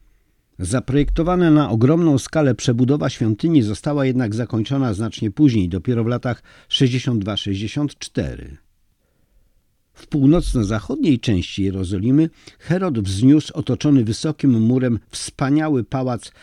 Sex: male